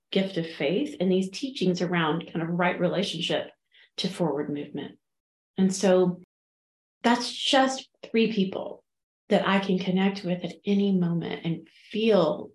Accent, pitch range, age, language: American, 160-190 Hz, 30-49, English